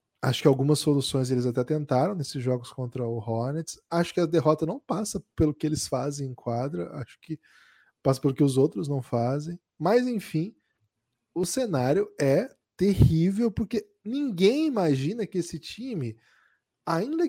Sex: male